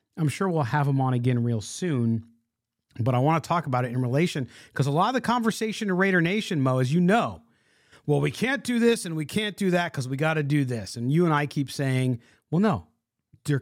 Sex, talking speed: male, 245 wpm